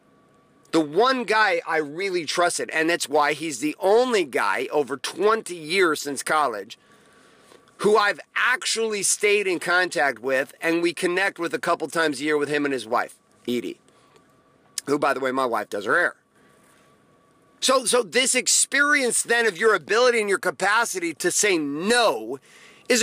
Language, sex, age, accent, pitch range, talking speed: English, male, 40-59, American, 180-255 Hz, 165 wpm